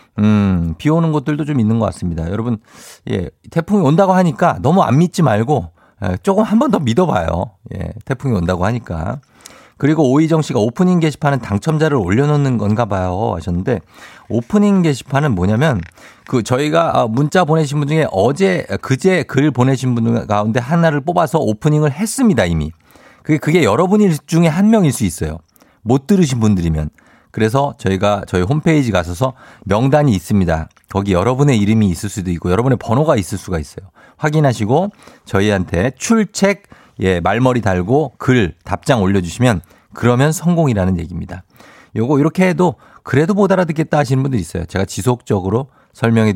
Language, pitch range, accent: Korean, 100-155 Hz, native